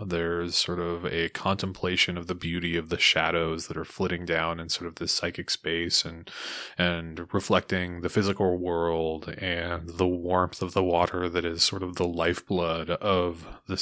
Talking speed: 180 wpm